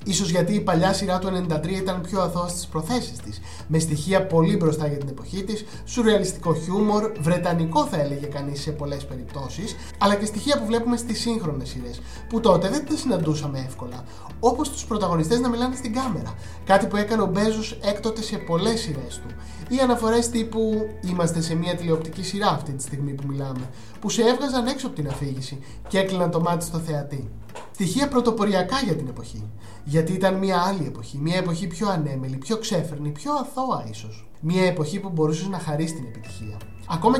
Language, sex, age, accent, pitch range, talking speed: Greek, male, 20-39, native, 150-205 Hz, 185 wpm